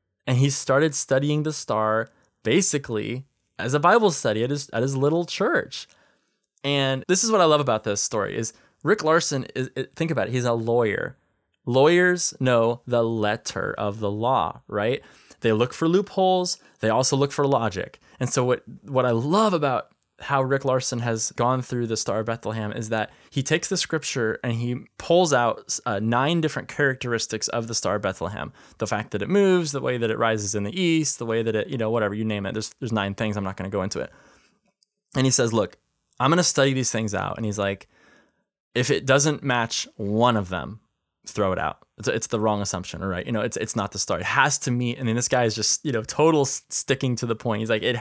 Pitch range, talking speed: 110-145 Hz, 230 wpm